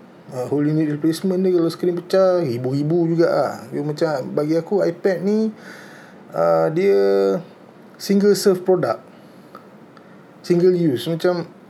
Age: 20-39